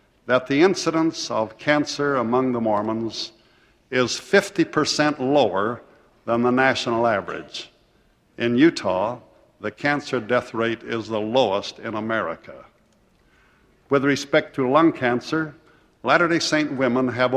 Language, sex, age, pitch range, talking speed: English, male, 60-79, 115-140 Hz, 120 wpm